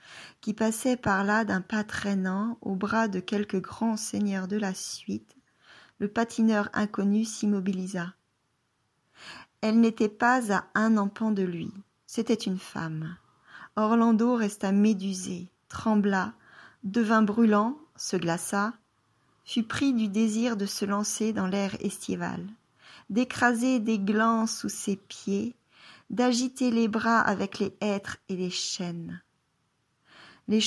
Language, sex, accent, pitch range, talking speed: French, female, French, 195-230 Hz, 125 wpm